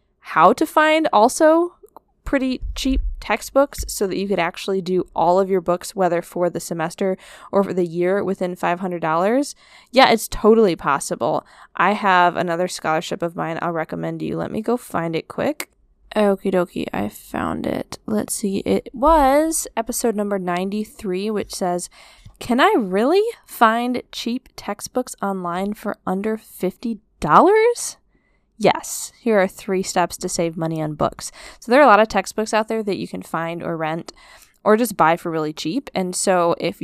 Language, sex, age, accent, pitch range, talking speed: English, female, 10-29, American, 175-245 Hz, 170 wpm